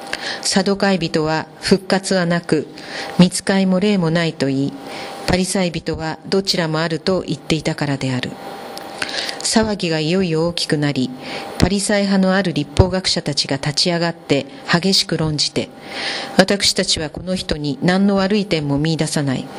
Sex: female